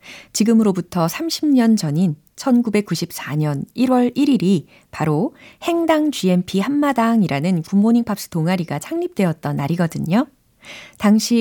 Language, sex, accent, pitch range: Korean, female, native, 160-235 Hz